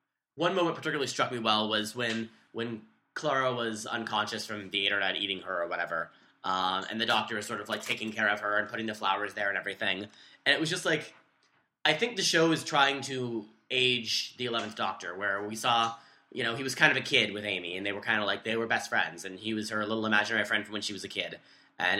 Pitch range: 105-125 Hz